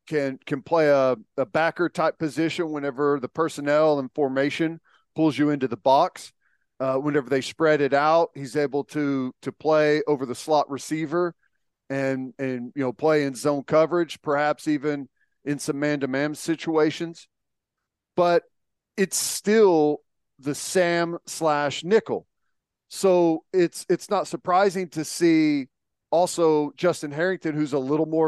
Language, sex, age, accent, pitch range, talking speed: English, male, 40-59, American, 145-175 Hz, 145 wpm